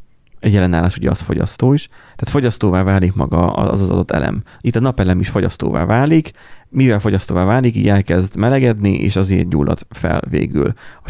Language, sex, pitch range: Hungarian, male, 90-110 Hz